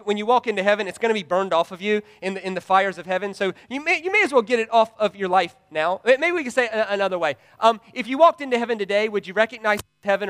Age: 30-49